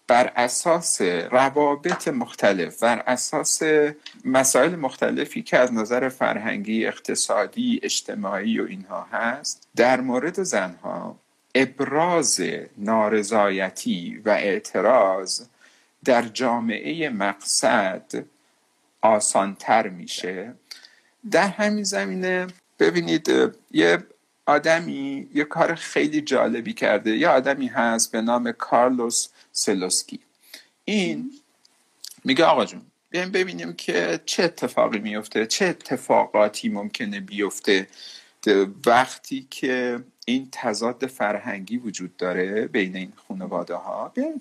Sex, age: male, 50-69